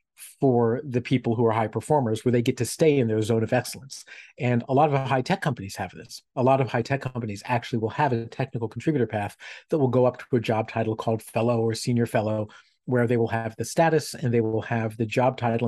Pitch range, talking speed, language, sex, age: 115-135 Hz, 240 wpm, English, male, 40-59